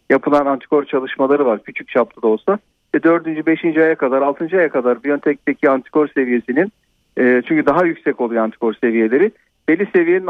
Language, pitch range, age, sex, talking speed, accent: Turkish, 135-185 Hz, 50-69, male, 165 wpm, native